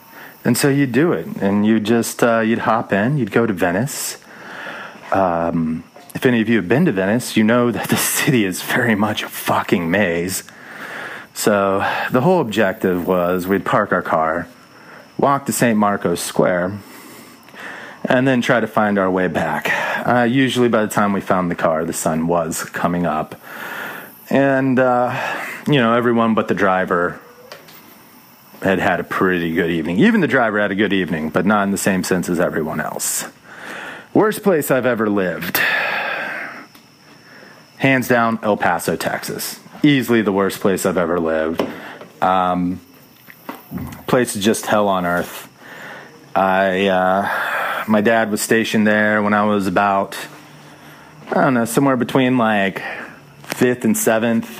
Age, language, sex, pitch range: 30-49, English, male, 95-120 Hz